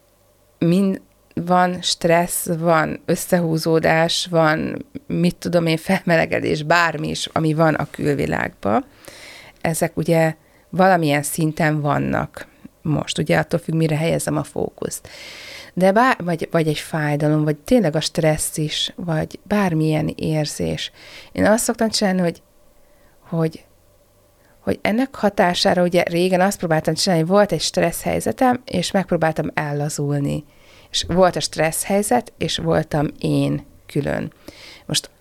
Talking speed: 125 wpm